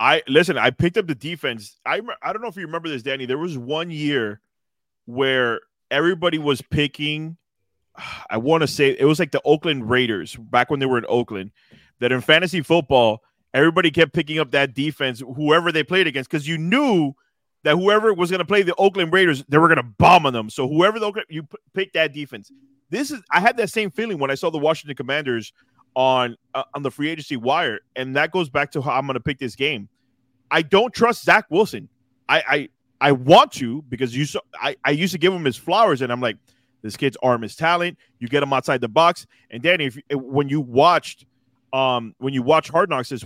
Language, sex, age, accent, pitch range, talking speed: English, male, 20-39, American, 130-170 Hz, 220 wpm